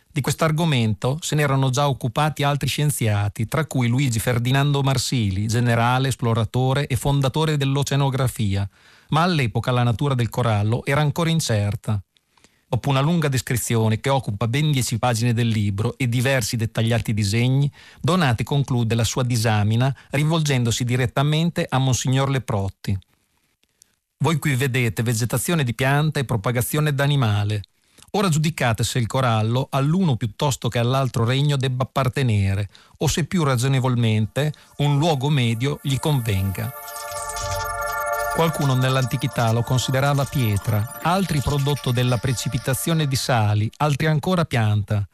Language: Italian